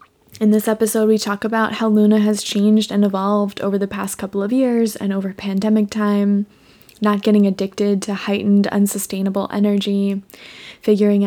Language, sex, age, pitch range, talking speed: English, female, 20-39, 200-215 Hz, 160 wpm